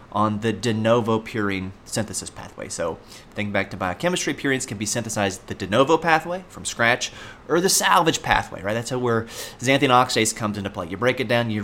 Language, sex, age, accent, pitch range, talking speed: English, male, 30-49, American, 105-130 Hz, 200 wpm